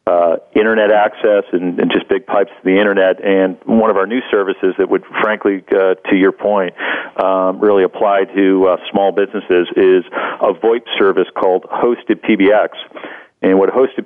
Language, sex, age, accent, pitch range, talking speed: English, male, 40-59, American, 95-110 Hz, 175 wpm